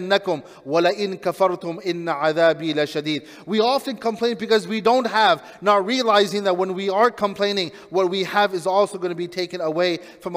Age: 30-49